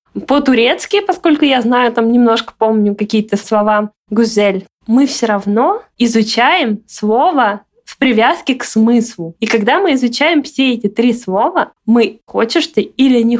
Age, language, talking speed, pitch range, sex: 20-39, Russian, 145 wpm, 205-250 Hz, female